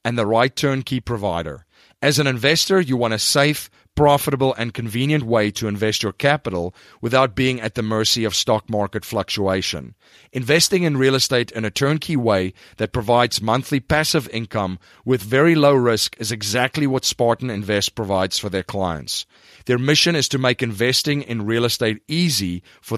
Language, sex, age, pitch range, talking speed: English, male, 40-59, 110-150 Hz, 170 wpm